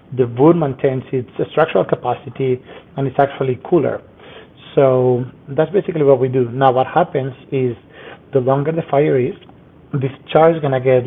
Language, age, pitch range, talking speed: English, 30-49, 125-140 Hz, 170 wpm